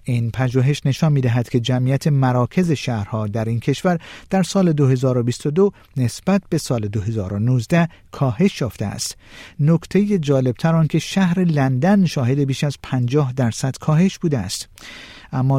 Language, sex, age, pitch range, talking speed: Persian, male, 50-69, 120-170 Hz, 135 wpm